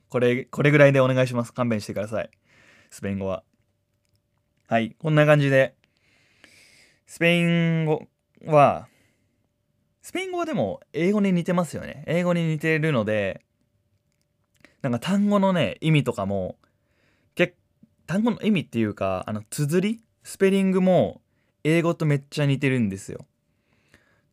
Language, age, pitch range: Japanese, 20-39, 110-160 Hz